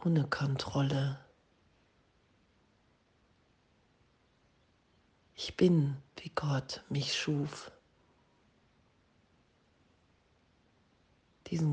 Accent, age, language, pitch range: German, 40-59, German, 135-155 Hz